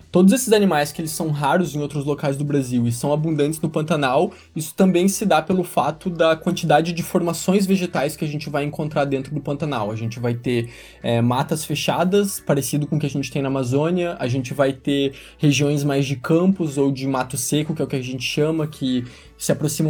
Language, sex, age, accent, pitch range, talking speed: Portuguese, male, 20-39, Brazilian, 135-175 Hz, 225 wpm